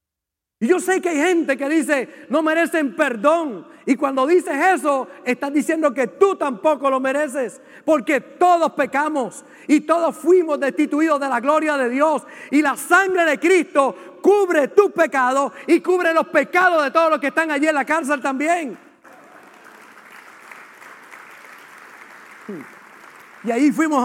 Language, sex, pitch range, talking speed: Spanish, male, 265-310 Hz, 145 wpm